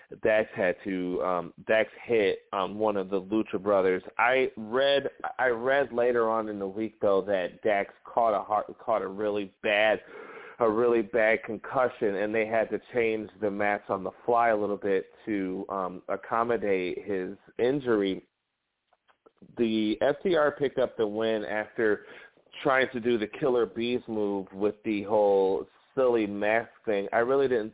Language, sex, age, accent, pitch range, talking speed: English, male, 30-49, American, 100-120 Hz, 165 wpm